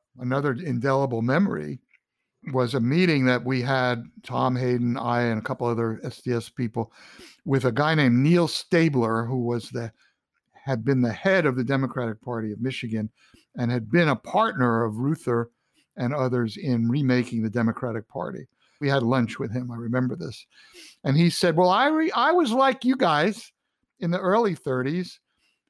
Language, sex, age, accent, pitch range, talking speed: English, male, 60-79, American, 125-180 Hz, 175 wpm